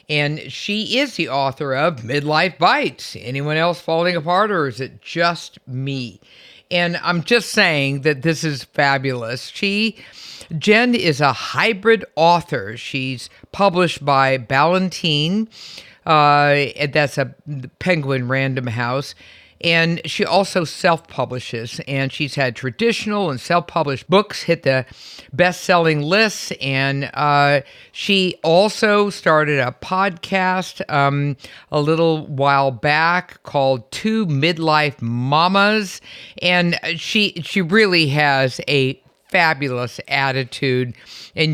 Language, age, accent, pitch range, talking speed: English, 50-69, American, 135-175 Hz, 115 wpm